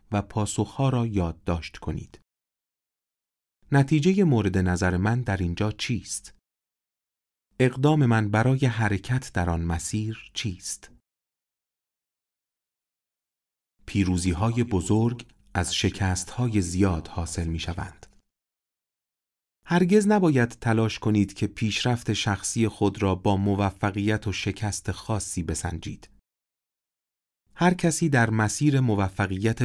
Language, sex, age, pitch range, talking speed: Persian, male, 40-59, 95-125 Hz, 105 wpm